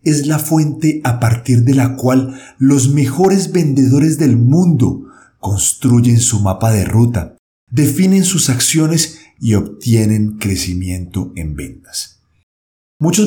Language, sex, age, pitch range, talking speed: Spanish, male, 50-69, 115-150 Hz, 120 wpm